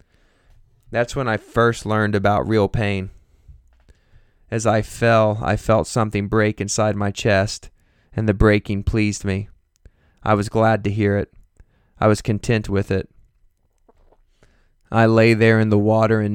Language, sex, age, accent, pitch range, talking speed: English, male, 20-39, American, 100-115 Hz, 150 wpm